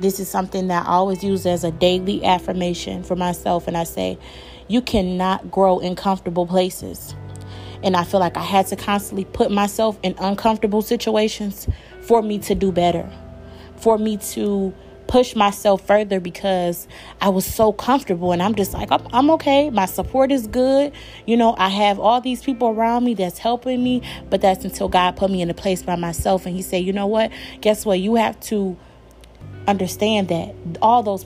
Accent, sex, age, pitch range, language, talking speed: American, female, 30-49, 175-215 Hz, English, 190 wpm